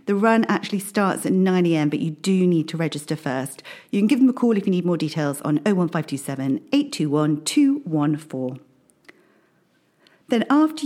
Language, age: English, 40-59